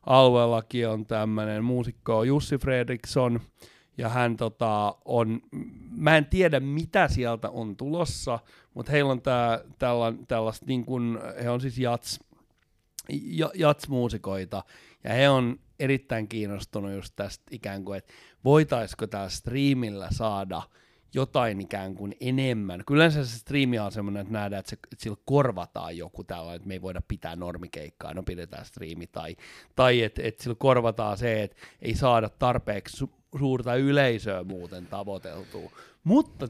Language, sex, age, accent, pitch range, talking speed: Finnish, male, 30-49, native, 100-130 Hz, 145 wpm